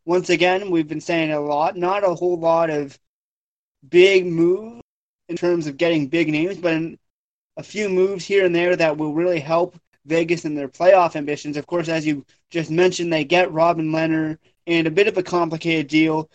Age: 20-39